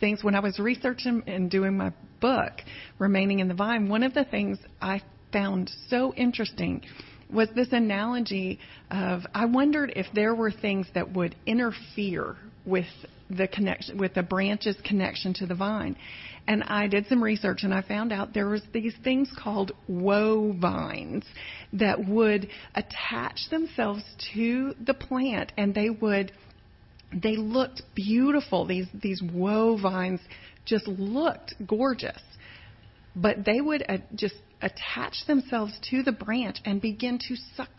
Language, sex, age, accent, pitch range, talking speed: English, female, 40-59, American, 190-230 Hz, 150 wpm